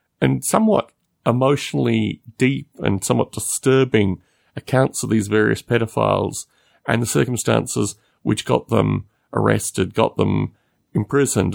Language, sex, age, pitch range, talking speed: English, male, 40-59, 95-120 Hz, 115 wpm